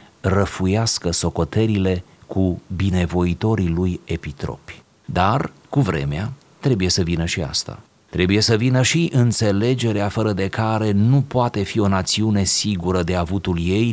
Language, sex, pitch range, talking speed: Romanian, male, 90-120 Hz, 135 wpm